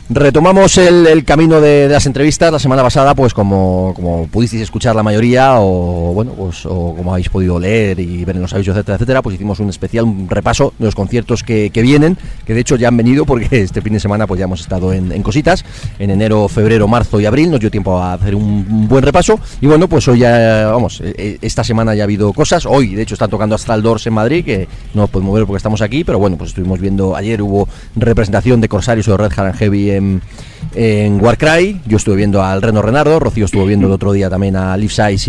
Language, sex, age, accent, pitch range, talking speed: Spanish, male, 30-49, Spanish, 100-135 Hz, 240 wpm